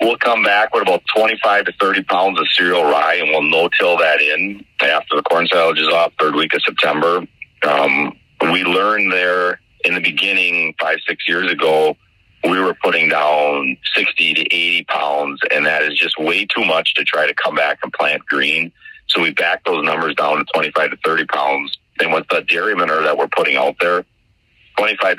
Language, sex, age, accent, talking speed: English, male, 40-59, American, 200 wpm